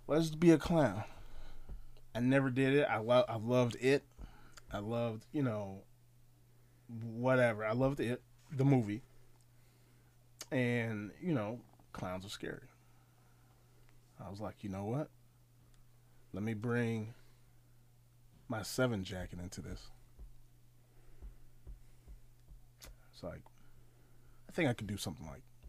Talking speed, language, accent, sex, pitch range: 125 wpm, English, American, male, 115-145 Hz